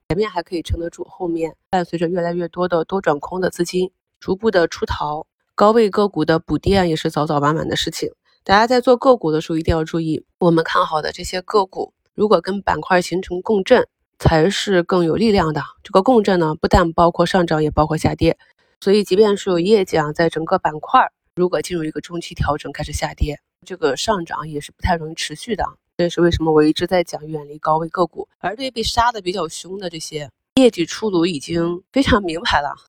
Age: 20-39